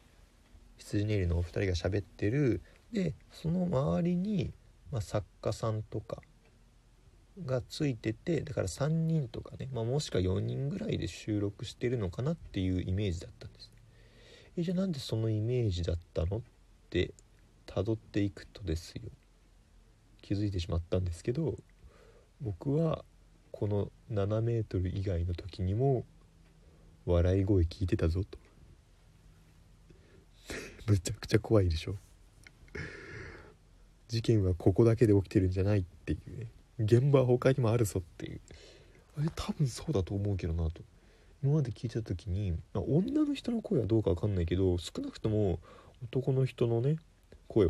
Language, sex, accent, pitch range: Japanese, male, native, 90-120 Hz